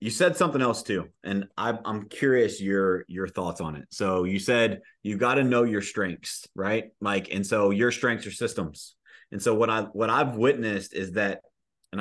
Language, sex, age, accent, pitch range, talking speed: English, male, 30-49, American, 95-120 Hz, 205 wpm